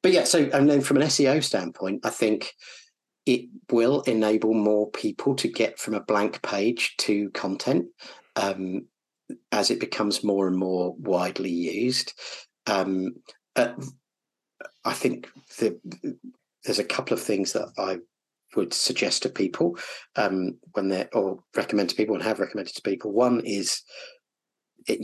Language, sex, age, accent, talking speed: English, male, 40-59, British, 155 wpm